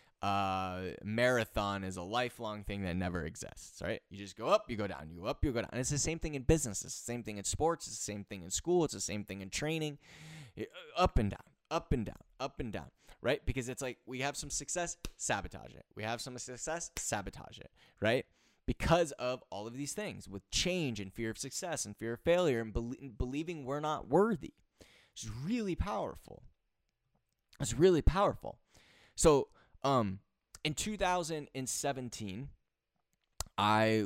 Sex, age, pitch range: male, 20-39, 105-140 Hz